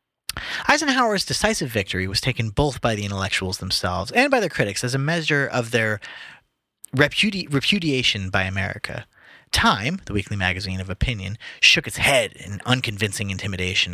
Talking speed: 150 wpm